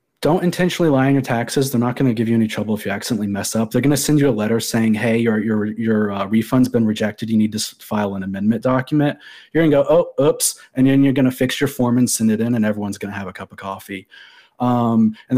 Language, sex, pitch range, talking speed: English, male, 110-150 Hz, 275 wpm